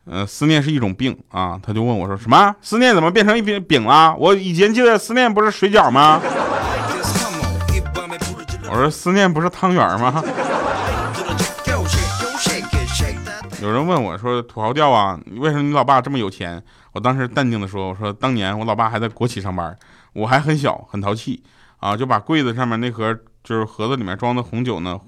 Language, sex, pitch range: Chinese, male, 100-150 Hz